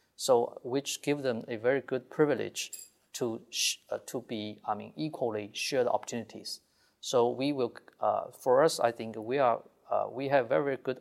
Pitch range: 115-140 Hz